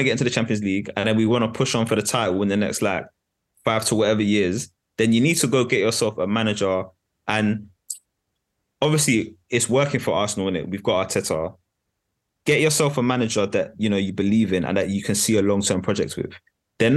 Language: English